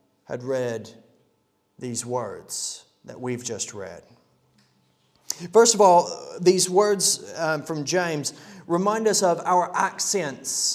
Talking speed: 115 wpm